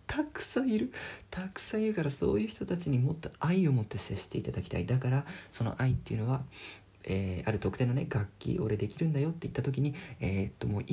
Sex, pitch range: male, 105-155 Hz